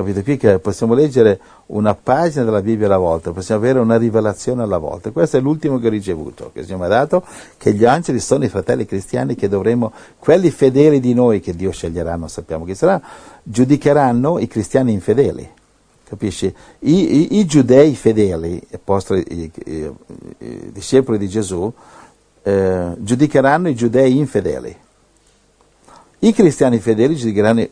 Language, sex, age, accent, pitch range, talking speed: Italian, male, 60-79, native, 95-130 Hz, 160 wpm